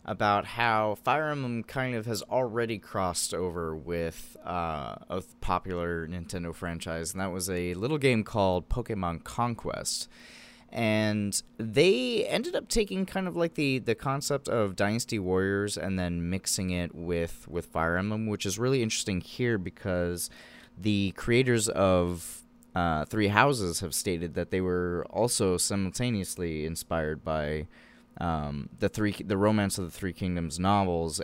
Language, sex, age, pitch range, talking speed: English, male, 20-39, 90-120 Hz, 150 wpm